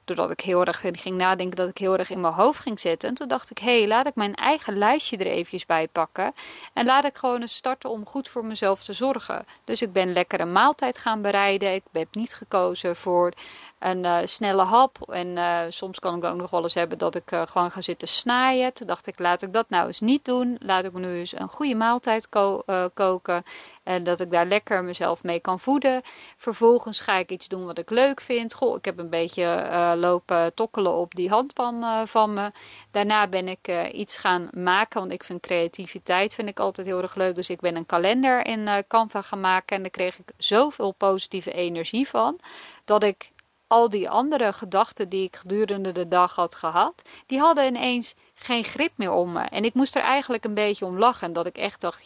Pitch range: 180-235 Hz